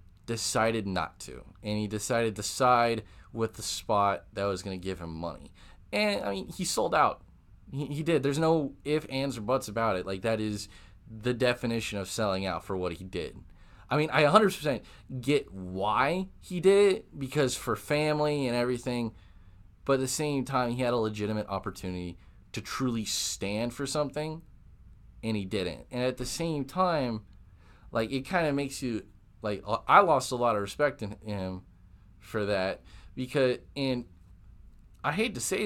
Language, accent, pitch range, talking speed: English, American, 95-145 Hz, 180 wpm